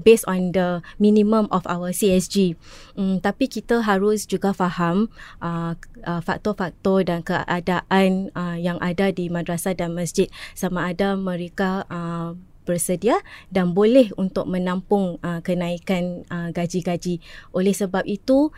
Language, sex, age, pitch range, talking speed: Malay, female, 20-39, 175-200 Hz, 130 wpm